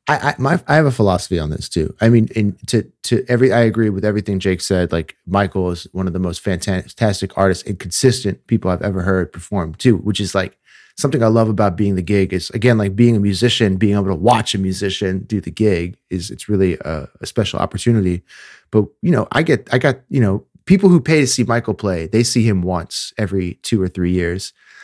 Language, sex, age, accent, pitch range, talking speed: English, male, 30-49, American, 95-120 Hz, 225 wpm